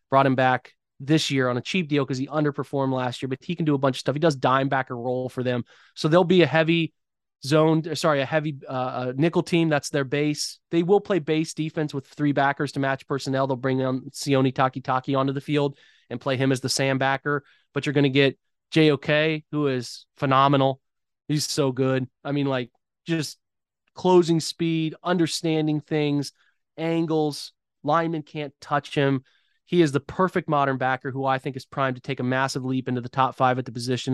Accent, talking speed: American, 210 wpm